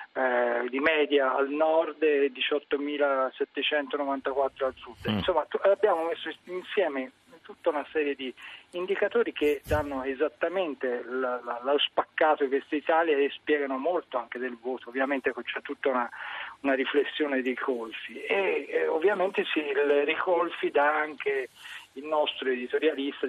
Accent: native